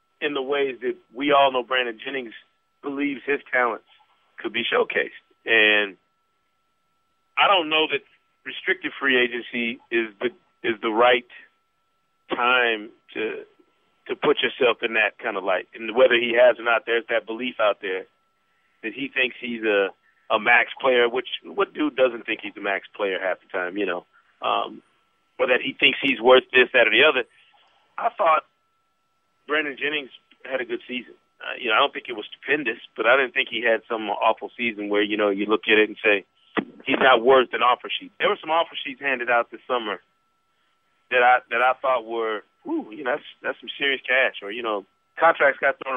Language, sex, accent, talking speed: English, male, American, 200 wpm